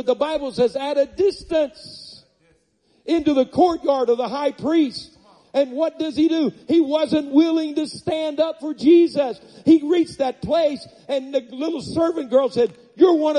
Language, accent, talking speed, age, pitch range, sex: English, American, 175 wpm, 50-69, 225-295 Hz, male